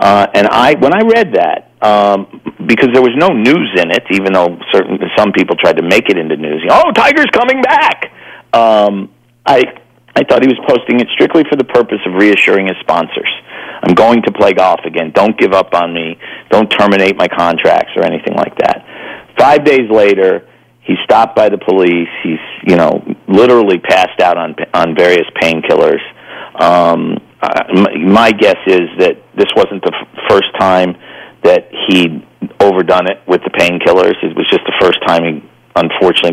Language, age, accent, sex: English, 50-69, American, male